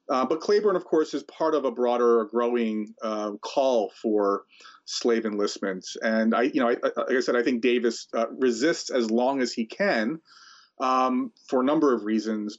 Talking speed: 195 wpm